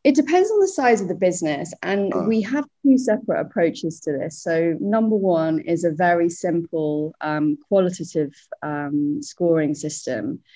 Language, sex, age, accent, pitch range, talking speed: English, female, 30-49, British, 150-180 Hz, 160 wpm